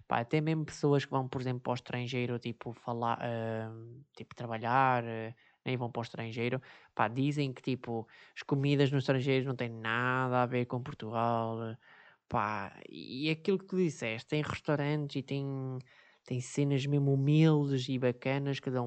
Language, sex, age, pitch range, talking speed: Portuguese, male, 20-39, 120-145 Hz, 180 wpm